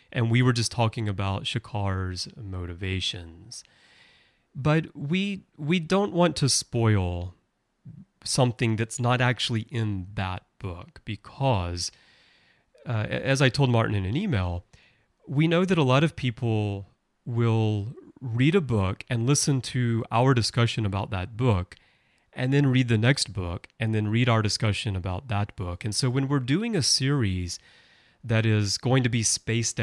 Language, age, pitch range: English, 30-49, 100-125 Hz